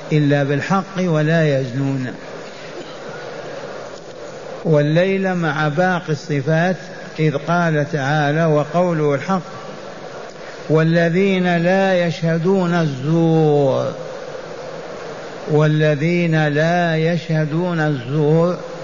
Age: 50-69